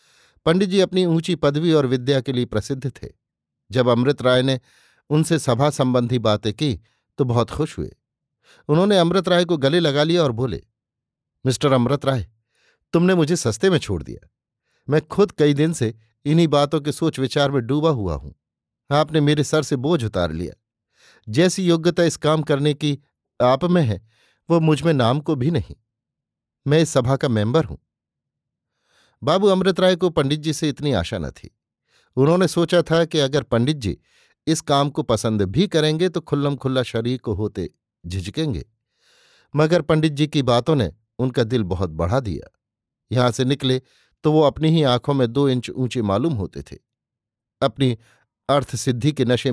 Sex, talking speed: male, 175 wpm